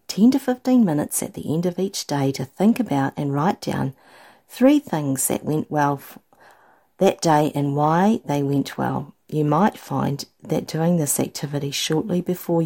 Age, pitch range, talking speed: 50-69, 140-195 Hz, 175 wpm